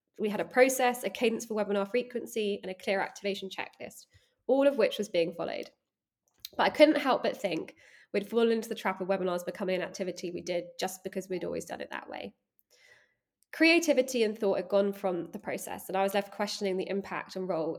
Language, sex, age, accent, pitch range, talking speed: English, female, 20-39, British, 190-250 Hz, 215 wpm